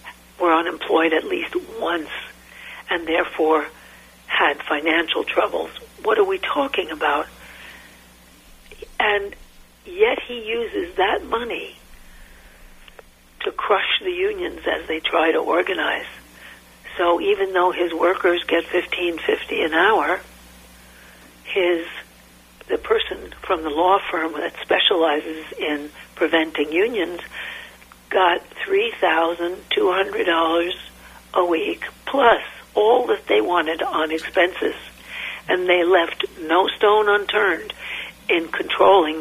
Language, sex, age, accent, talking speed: English, female, 60-79, American, 105 wpm